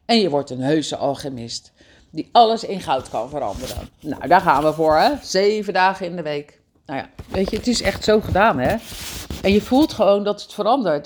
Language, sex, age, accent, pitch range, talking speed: Dutch, female, 40-59, Dutch, 150-205 Hz, 215 wpm